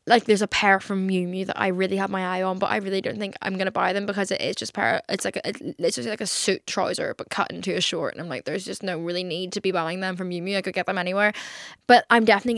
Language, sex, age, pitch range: English, female, 10-29, 190-235 Hz